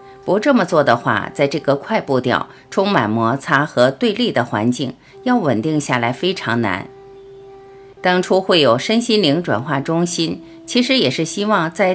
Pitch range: 130-195 Hz